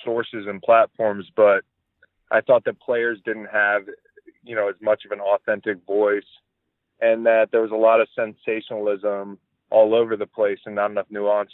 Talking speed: 175 wpm